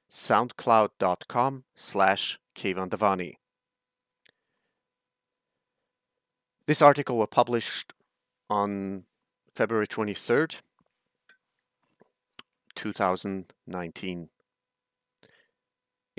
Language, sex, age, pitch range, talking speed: English, male, 40-59, 100-125 Hz, 40 wpm